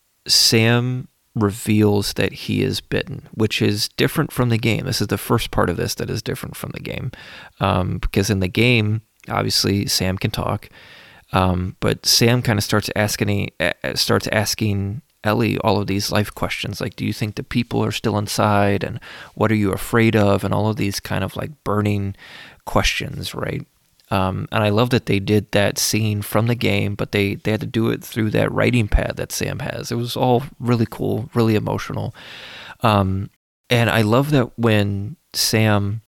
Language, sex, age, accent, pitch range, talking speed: English, male, 30-49, American, 100-120 Hz, 185 wpm